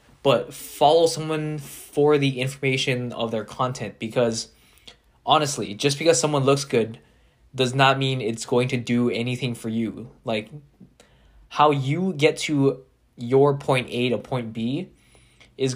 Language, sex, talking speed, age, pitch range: English, male, 145 wpm, 10-29, 115-145 Hz